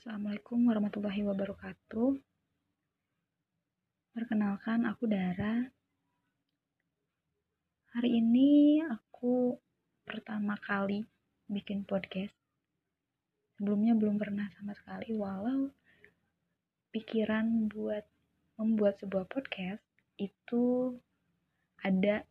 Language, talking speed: Indonesian, 70 wpm